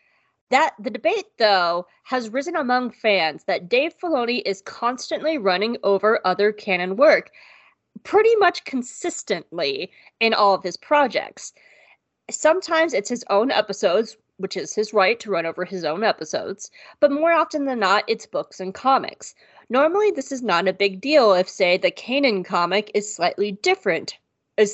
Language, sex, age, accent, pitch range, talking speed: English, female, 30-49, American, 195-285 Hz, 160 wpm